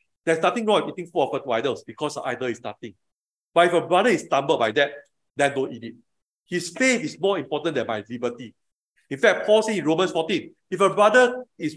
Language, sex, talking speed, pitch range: English, male, 230 wpm, 140-190 Hz